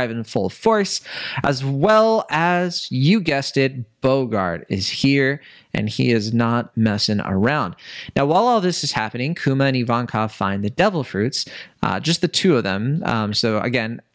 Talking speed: 170 wpm